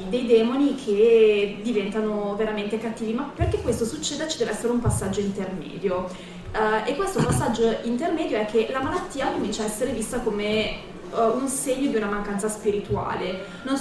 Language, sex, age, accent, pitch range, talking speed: Italian, female, 20-39, native, 200-230 Hz, 155 wpm